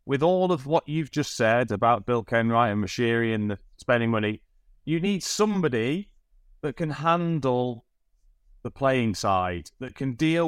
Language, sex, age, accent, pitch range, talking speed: English, male, 30-49, British, 110-145 Hz, 160 wpm